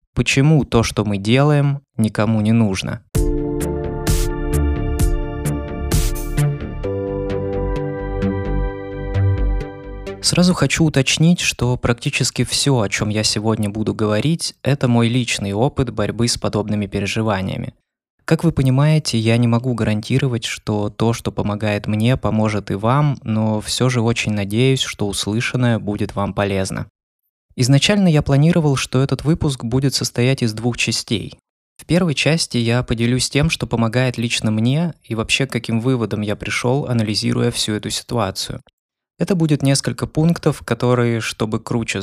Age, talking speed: 20-39, 130 wpm